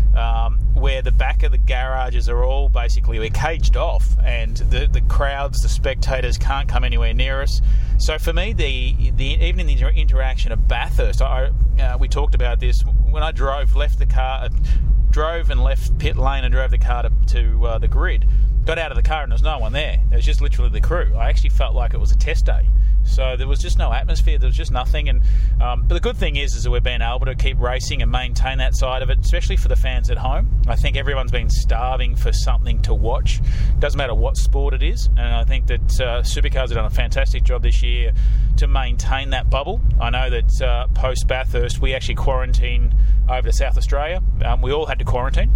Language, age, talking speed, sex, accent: English, 30-49, 235 wpm, male, Australian